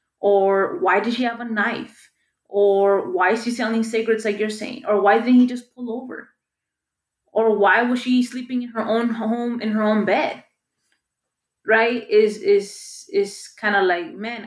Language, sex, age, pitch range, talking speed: English, female, 20-39, 195-240 Hz, 185 wpm